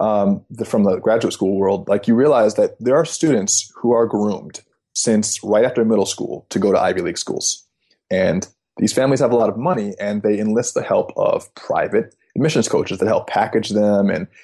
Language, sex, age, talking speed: English, male, 20-39, 210 wpm